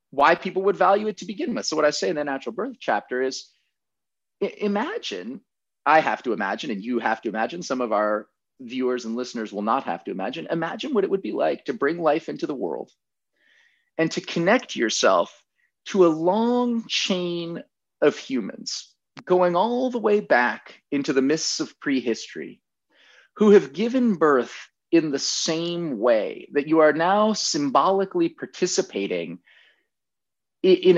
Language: English